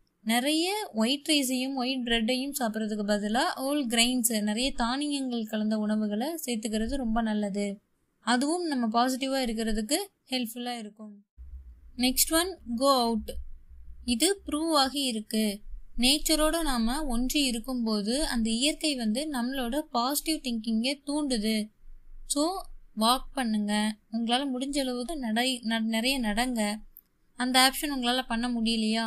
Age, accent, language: 20-39, native, Tamil